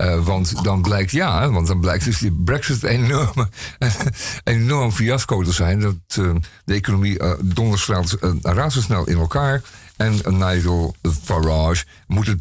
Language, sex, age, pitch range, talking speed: Dutch, male, 50-69, 85-110 Hz, 155 wpm